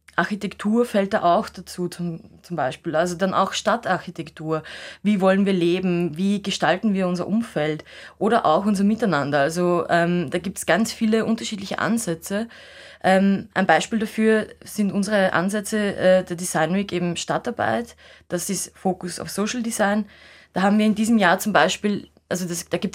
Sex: female